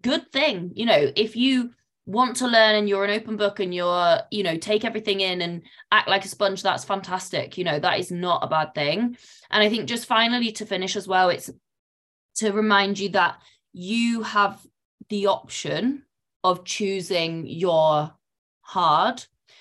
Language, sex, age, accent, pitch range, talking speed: English, female, 20-39, British, 165-215 Hz, 180 wpm